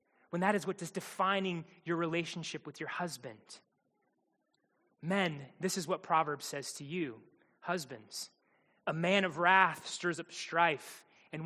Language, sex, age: English, male, 20-39